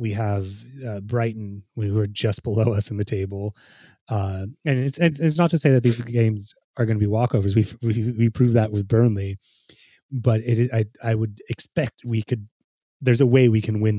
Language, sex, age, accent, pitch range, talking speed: English, male, 30-49, American, 105-120 Hz, 205 wpm